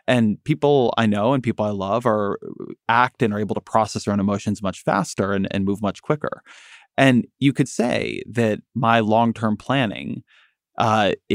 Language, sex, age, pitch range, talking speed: English, male, 30-49, 100-125 Hz, 180 wpm